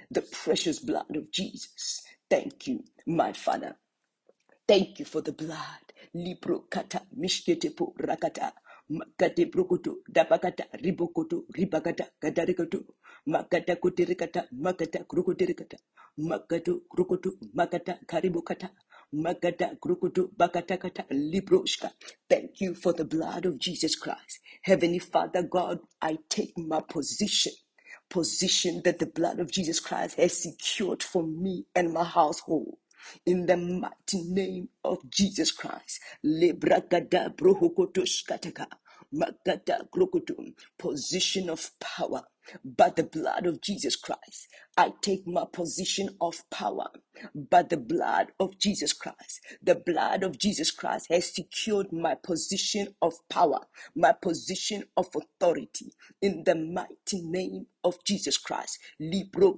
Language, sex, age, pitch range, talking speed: English, female, 40-59, 170-200 Hz, 120 wpm